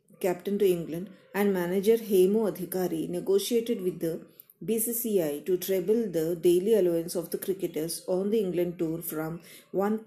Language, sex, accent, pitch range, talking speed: Kannada, female, native, 180-215 Hz, 150 wpm